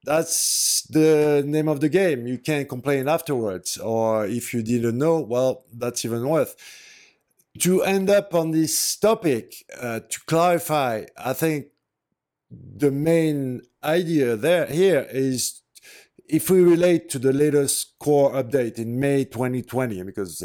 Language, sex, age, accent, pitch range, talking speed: English, male, 50-69, French, 130-170 Hz, 140 wpm